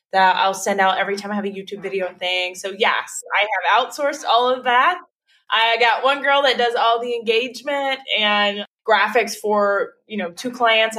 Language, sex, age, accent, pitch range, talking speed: English, female, 20-39, American, 185-230 Hz, 195 wpm